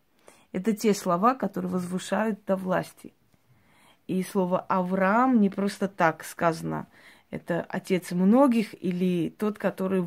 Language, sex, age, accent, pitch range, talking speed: Russian, female, 20-39, native, 180-215 Hz, 120 wpm